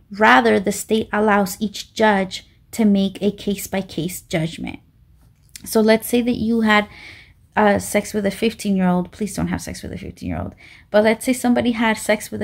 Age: 30-49